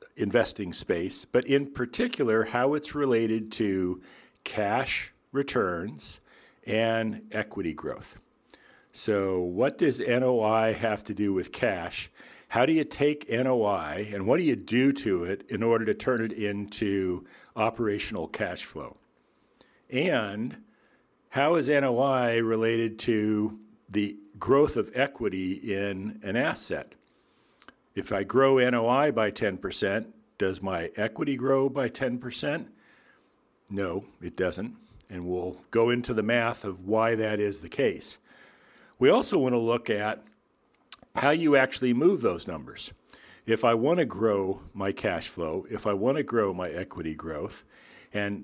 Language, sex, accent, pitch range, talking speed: English, male, American, 100-125 Hz, 140 wpm